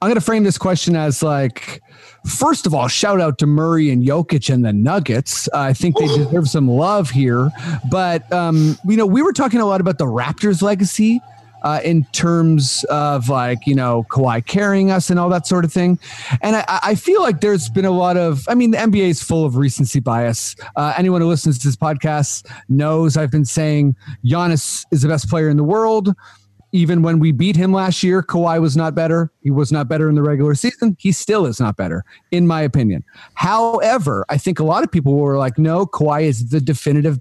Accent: American